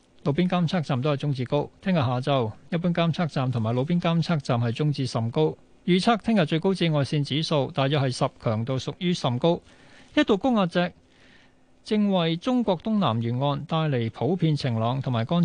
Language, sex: Chinese, male